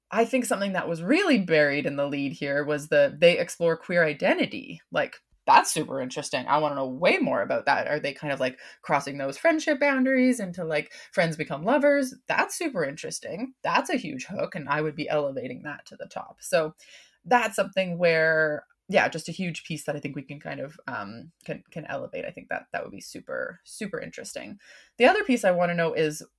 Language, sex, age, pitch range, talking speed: English, female, 20-39, 150-245 Hz, 220 wpm